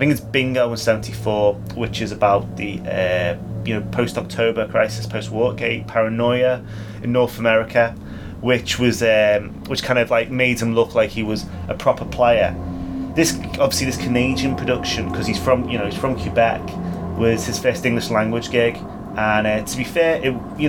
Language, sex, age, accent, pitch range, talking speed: English, male, 30-49, British, 95-120 Hz, 175 wpm